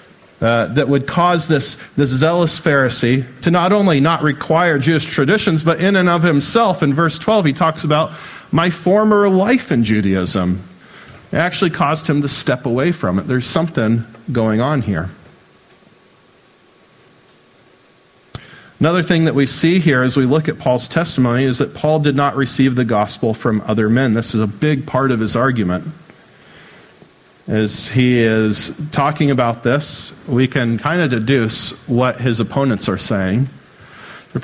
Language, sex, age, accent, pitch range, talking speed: English, male, 40-59, American, 115-160 Hz, 160 wpm